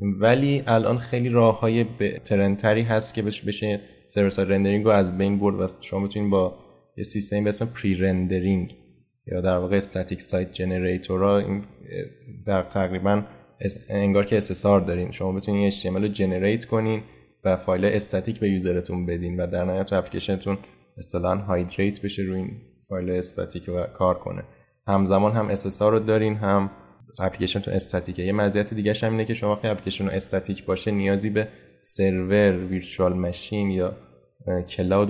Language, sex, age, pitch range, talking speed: Persian, male, 20-39, 90-105 Hz, 160 wpm